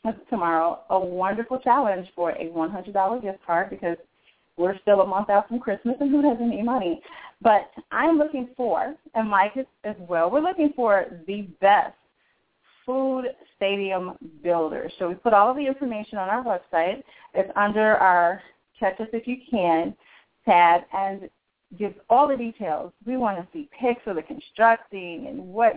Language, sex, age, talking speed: English, female, 30-49, 170 wpm